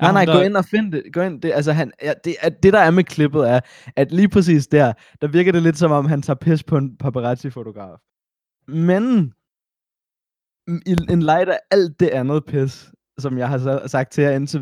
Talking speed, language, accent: 205 wpm, Danish, native